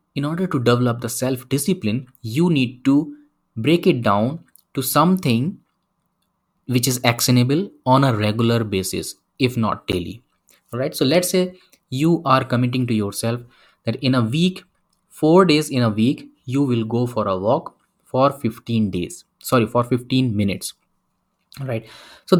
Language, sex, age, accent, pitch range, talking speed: English, male, 20-39, Indian, 120-150 Hz, 155 wpm